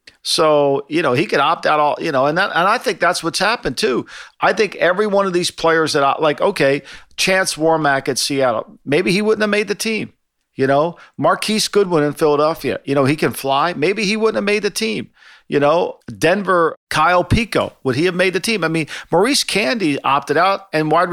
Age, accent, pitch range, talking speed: 50-69, American, 140-190 Hz, 220 wpm